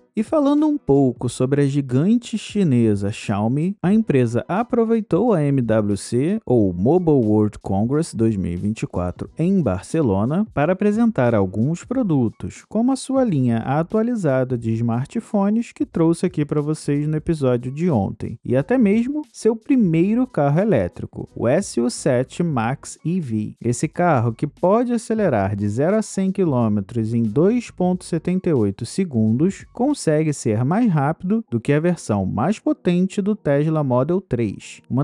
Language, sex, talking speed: Portuguese, male, 140 wpm